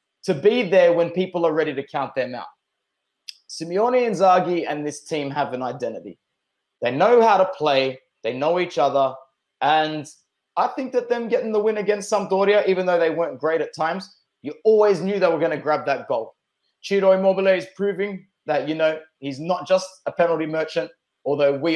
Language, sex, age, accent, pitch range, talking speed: English, male, 20-39, Australian, 145-195 Hz, 195 wpm